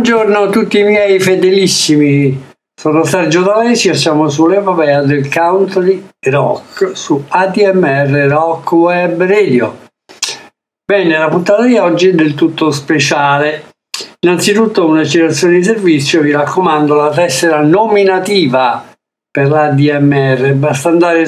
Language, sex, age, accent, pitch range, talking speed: Italian, male, 60-79, native, 145-180 Hz, 120 wpm